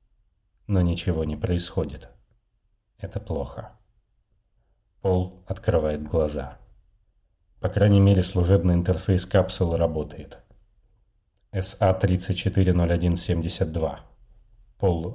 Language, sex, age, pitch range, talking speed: Russian, male, 30-49, 85-100 Hz, 75 wpm